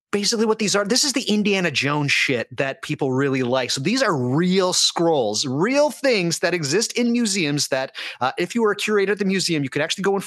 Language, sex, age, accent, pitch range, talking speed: English, male, 30-49, American, 130-185 Hz, 235 wpm